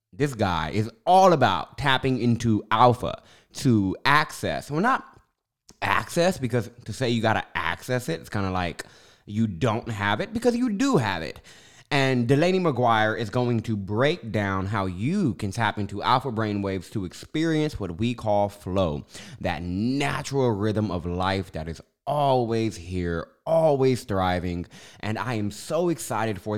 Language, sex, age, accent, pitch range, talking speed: English, male, 20-39, American, 100-135 Hz, 165 wpm